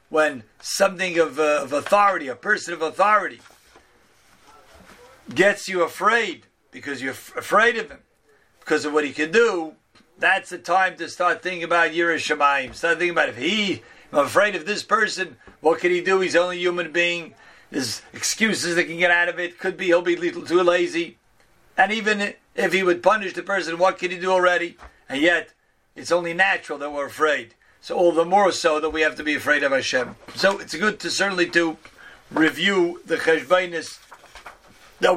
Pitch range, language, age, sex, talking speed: 165-190 Hz, English, 50-69, male, 190 wpm